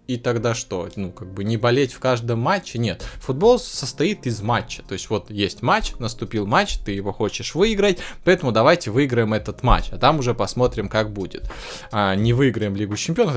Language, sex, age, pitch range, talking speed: Russian, male, 20-39, 105-130 Hz, 195 wpm